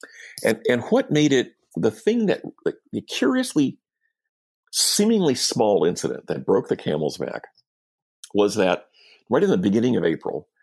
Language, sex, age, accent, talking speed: English, male, 50-69, American, 150 wpm